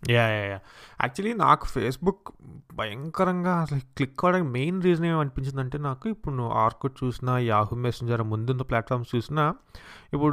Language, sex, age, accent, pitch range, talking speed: English, male, 20-39, Indian, 120-160 Hz, 115 wpm